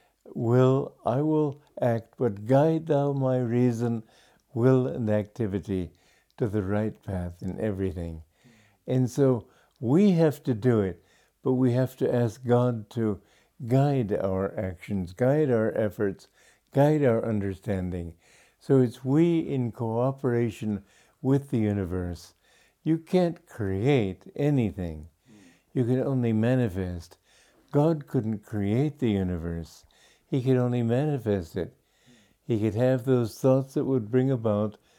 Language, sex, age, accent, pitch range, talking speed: English, male, 60-79, American, 100-130 Hz, 130 wpm